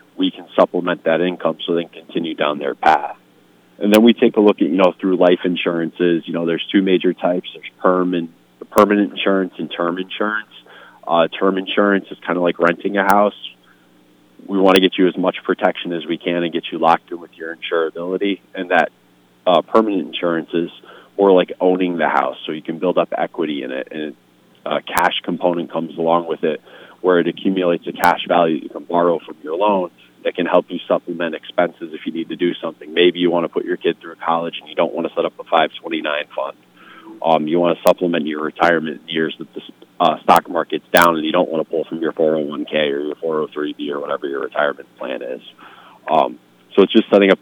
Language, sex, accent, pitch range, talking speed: English, male, American, 80-95 Hz, 220 wpm